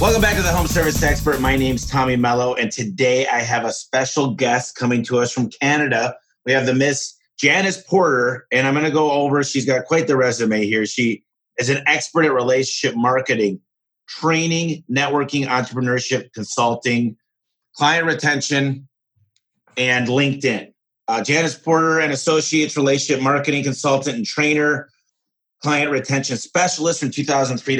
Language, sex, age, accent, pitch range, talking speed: English, male, 30-49, American, 120-145 Hz, 155 wpm